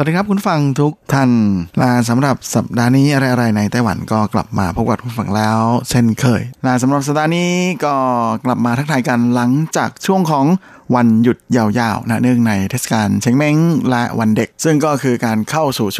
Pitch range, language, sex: 115-145 Hz, Thai, male